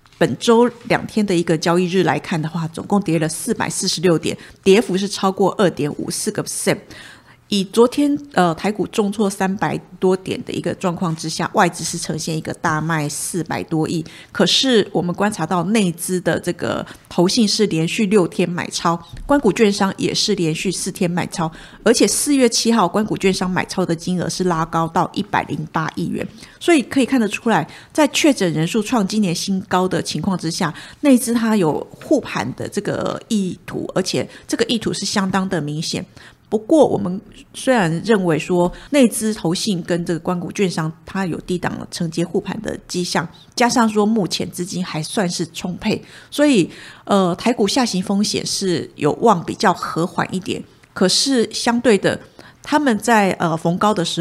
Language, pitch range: Chinese, 170-215 Hz